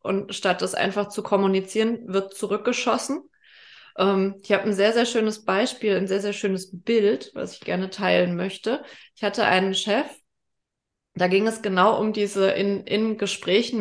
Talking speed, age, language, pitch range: 170 wpm, 20-39, German, 190-225 Hz